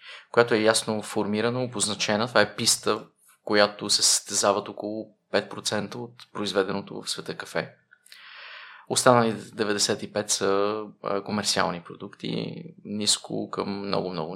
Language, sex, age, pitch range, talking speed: Bulgarian, male, 20-39, 100-115 Hz, 115 wpm